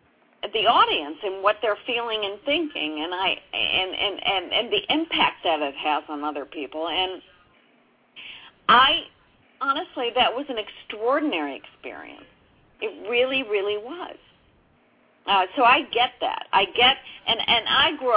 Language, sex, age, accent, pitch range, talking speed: English, female, 50-69, American, 195-295 Hz, 150 wpm